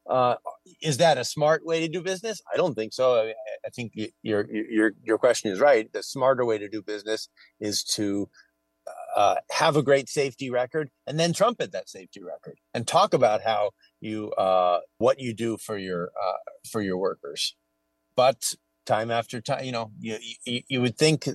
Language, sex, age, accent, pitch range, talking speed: English, male, 30-49, American, 105-140 Hz, 195 wpm